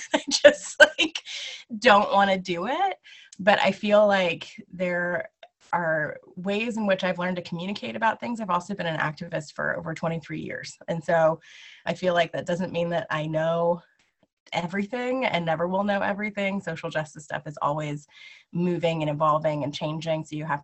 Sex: female